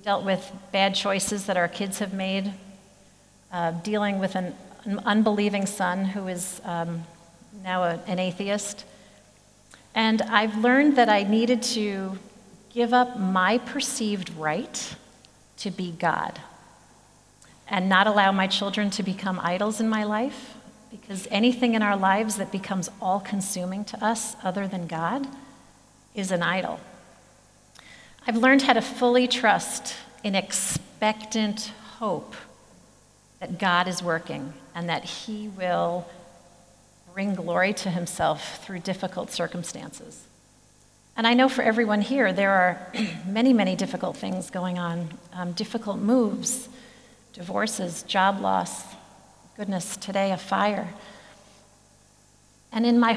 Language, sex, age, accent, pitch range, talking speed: English, female, 40-59, American, 185-220 Hz, 130 wpm